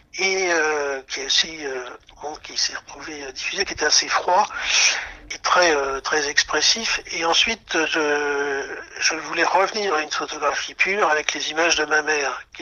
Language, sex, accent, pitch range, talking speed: French, male, French, 150-180 Hz, 175 wpm